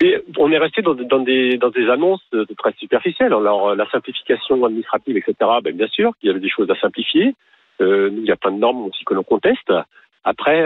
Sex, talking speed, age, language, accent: male, 225 wpm, 40-59, French, French